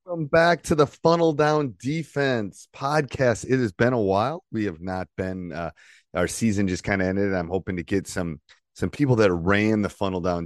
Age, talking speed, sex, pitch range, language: 30-49, 210 wpm, male, 85-110 Hz, English